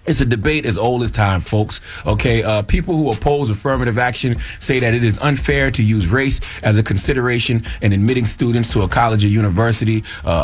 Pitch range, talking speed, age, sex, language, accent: 105-135 Hz, 200 wpm, 30-49, male, English, American